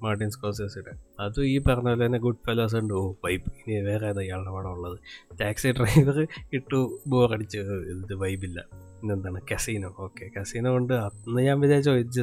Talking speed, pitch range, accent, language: 160 wpm, 100-130 Hz, native, Malayalam